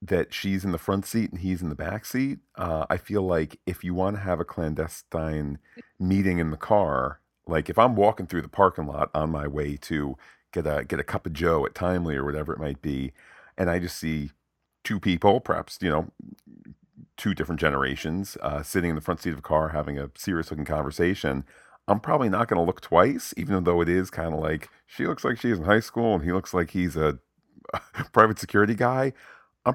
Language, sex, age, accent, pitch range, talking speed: English, male, 40-59, American, 75-100 Hz, 220 wpm